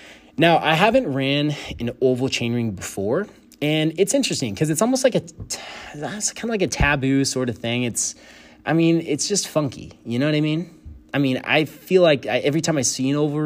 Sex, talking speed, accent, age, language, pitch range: male, 220 wpm, American, 30-49, English, 115-155 Hz